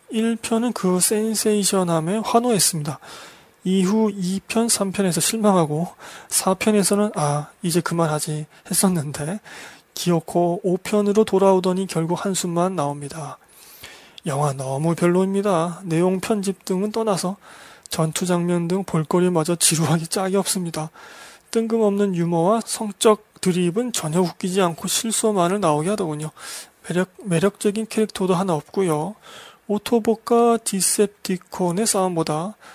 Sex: male